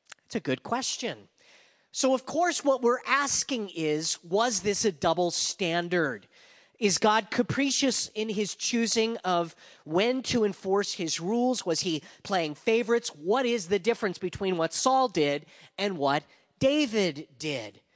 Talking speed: 145 wpm